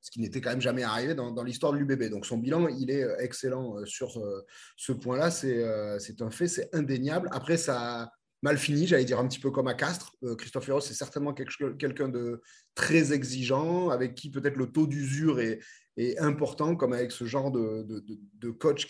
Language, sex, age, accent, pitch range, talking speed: French, male, 30-49, French, 120-145 Hz, 220 wpm